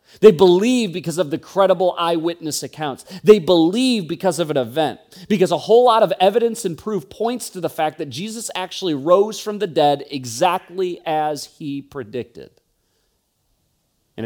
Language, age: English, 40-59